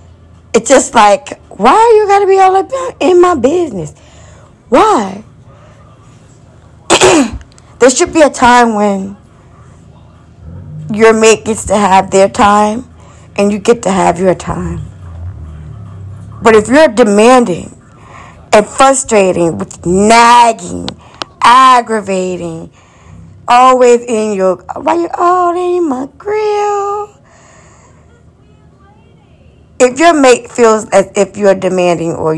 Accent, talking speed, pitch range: American, 115 wpm, 180-245 Hz